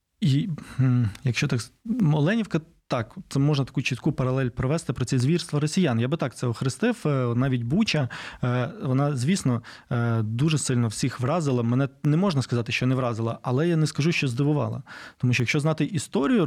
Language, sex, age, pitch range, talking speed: Ukrainian, male, 20-39, 125-150 Hz, 170 wpm